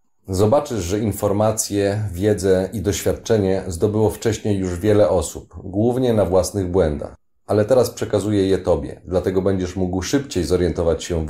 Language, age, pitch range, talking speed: Polish, 30-49, 90-105 Hz, 145 wpm